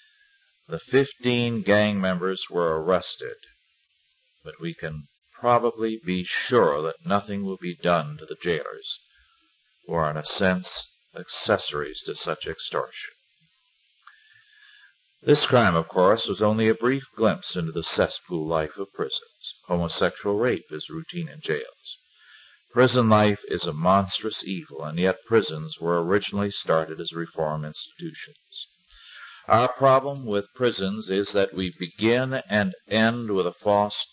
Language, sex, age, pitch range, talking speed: English, male, 50-69, 90-125 Hz, 135 wpm